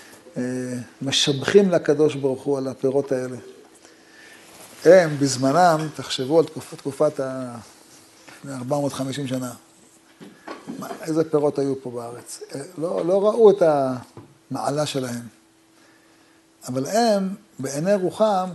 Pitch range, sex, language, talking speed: 135-170 Hz, male, Hebrew, 105 wpm